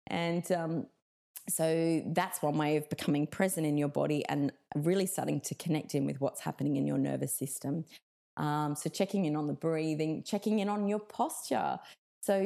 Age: 20-39